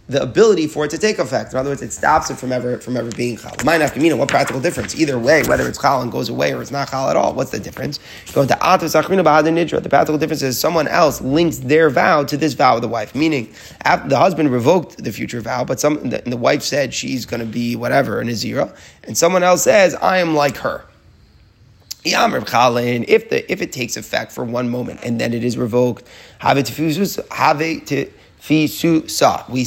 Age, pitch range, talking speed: 30-49, 125-160 Hz, 215 wpm